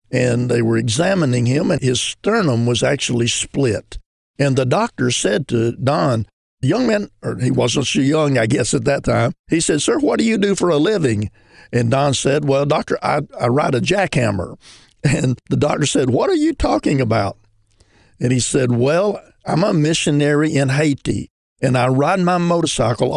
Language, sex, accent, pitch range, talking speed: English, male, American, 120-145 Hz, 190 wpm